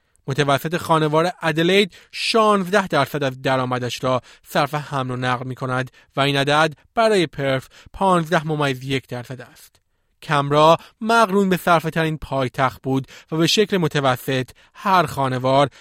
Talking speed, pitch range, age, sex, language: 135 wpm, 135-180 Hz, 30-49, male, Persian